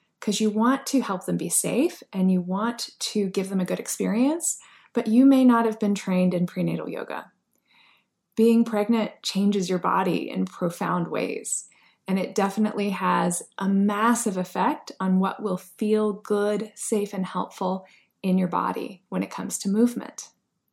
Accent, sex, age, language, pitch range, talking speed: American, female, 20-39, English, 190-235 Hz, 170 wpm